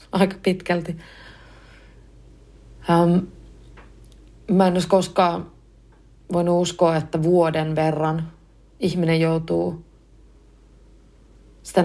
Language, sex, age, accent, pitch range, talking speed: Finnish, female, 30-49, native, 165-185 Hz, 75 wpm